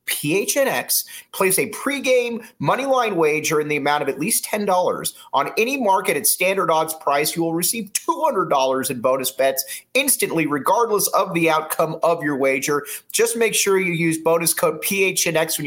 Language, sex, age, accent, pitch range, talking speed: English, male, 30-49, American, 115-160 Hz, 185 wpm